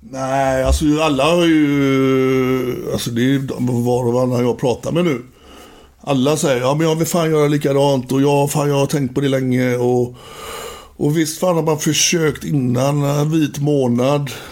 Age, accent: 60-79, native